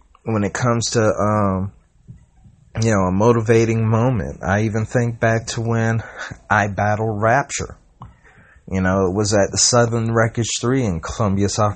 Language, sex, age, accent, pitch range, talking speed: English, male, 30-49, American, 95-115 Hz, 160 wpm